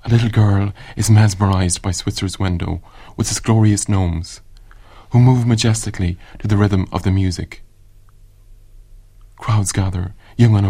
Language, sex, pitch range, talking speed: English, male, 95-105 Hz, 140 wpm